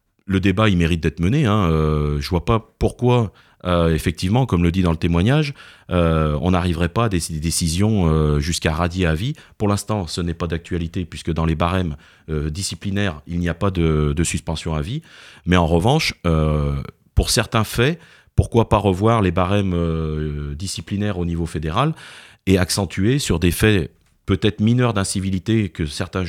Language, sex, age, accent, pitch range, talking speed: French, male, 30-49, French, 85-110 Hz, 185 wpm